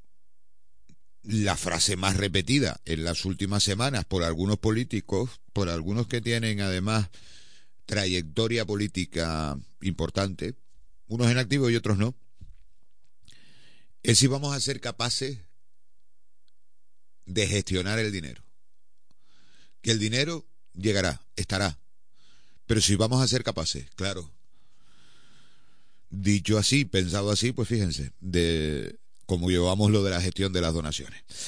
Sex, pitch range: male, 95-120 Hz